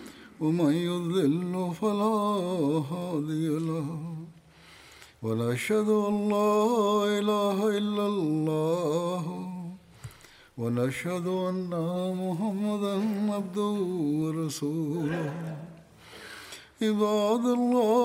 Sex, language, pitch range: male, Tamil, 160-205 Hz